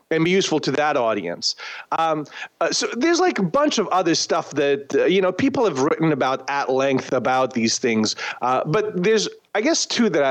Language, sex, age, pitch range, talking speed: English, male, 40-59, 125-185 Hz, 210 wpm